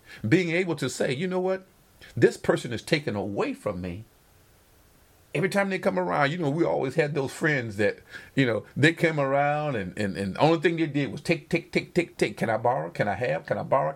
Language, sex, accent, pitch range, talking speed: English, male, American, 135-185 Hz, 235 wpm